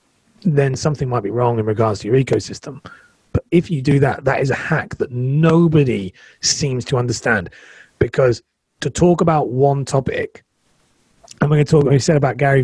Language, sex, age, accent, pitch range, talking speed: English, male, 30-49, British, 110-145 Hz, 190 wpm